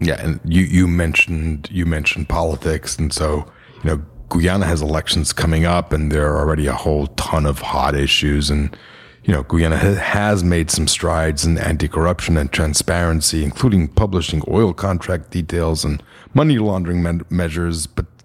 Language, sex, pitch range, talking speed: English, male, 80-95 Hz, 160 wpm